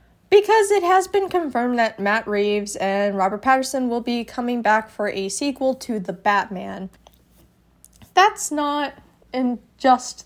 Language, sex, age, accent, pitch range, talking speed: English, female, 20-39, American, 205-265 Hz, 145 wpm